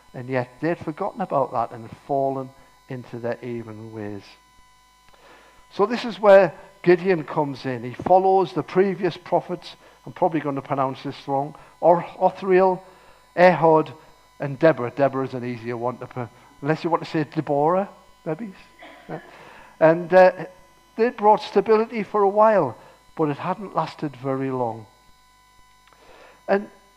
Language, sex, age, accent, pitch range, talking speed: English, male, 50-69, British, 140-195 Hz, 140 wpm